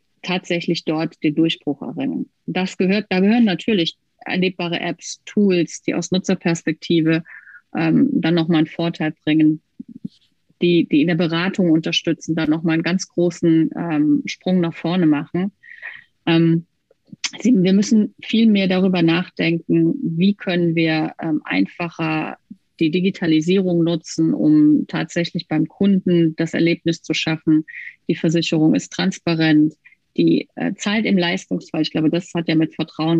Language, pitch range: German, 160-185 Hz